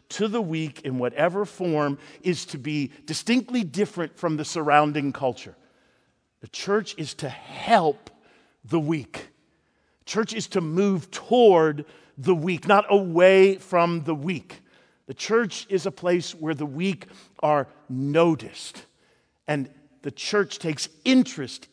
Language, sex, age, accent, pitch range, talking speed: English, male, 50-69, American, 140-190 Hz, 135 wpm